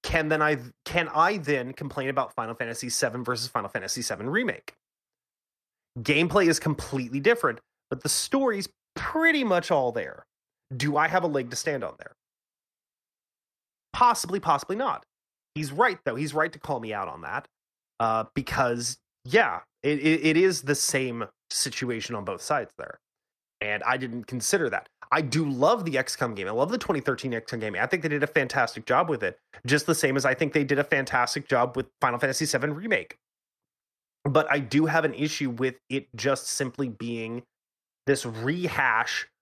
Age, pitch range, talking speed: 30-49, 125-155 Hz, 180 wpm